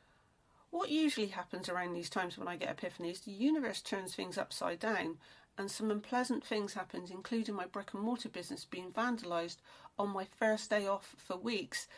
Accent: British